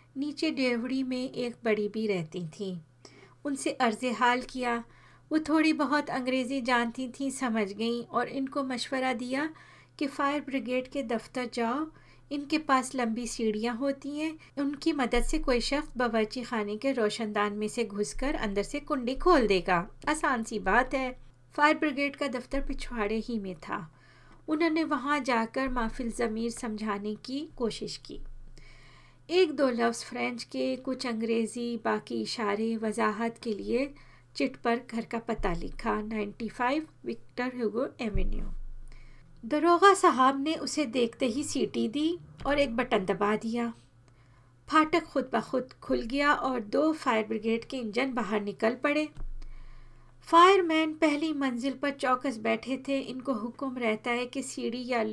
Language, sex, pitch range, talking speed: Hindi, female, 220-280 Hz, 150 wpm